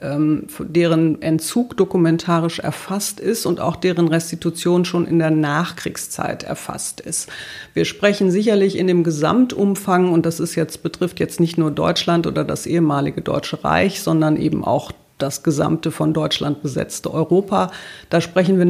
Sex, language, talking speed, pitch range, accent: female, German, 150 wpm, 155-185 Hz, German